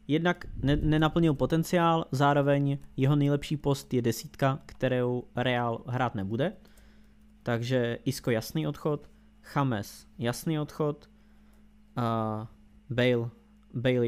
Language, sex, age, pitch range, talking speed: English, male, 20-39, 125-155 Hz, 100 wpm